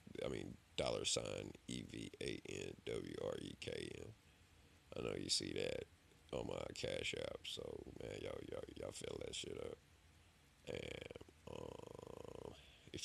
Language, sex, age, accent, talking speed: English, male, 30-49, American, 120 wpm